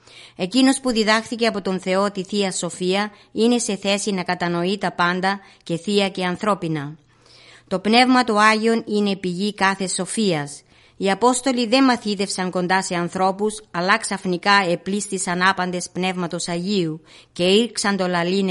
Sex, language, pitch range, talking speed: female, Greek, 180-205 Hz, 145 wpm